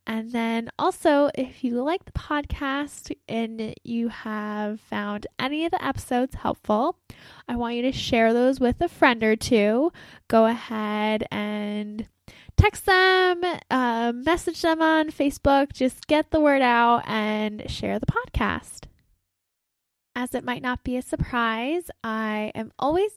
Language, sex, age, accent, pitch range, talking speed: English, female, 10-29, American, 215-285 Hz, 150 wpm